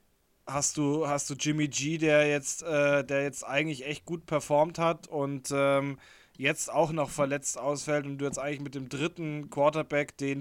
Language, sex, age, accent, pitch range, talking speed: German, male, 20-39, German, 140-155 Hz, 185 wpm